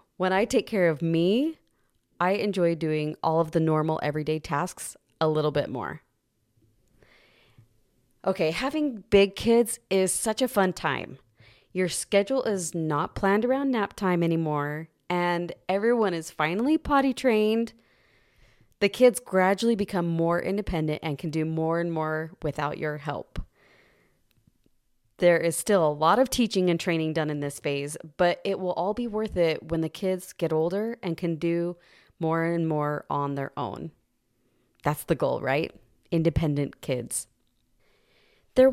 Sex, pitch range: female, 155-210 Hz